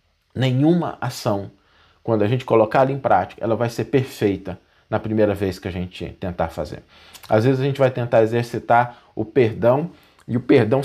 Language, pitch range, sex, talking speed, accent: Portuguese, 105-135 Hz, male, 185 wpm, Brazilian